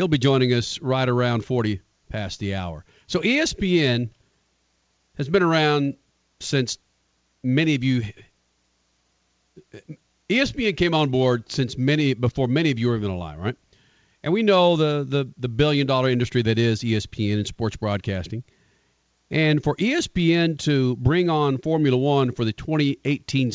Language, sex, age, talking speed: English, male, 40-59, 150 wpm